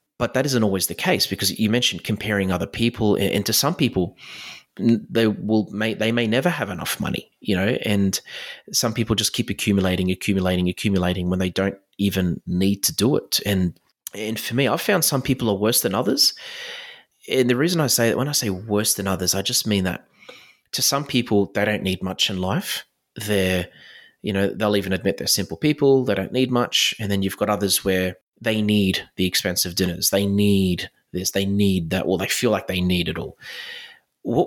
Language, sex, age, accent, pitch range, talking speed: English, male, 30-49, Australian, 95-120 Hz, 210 wpm